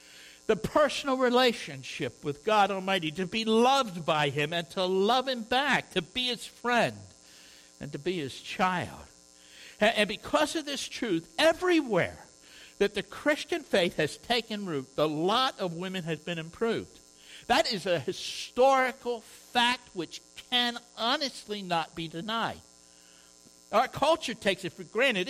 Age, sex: 60-79, male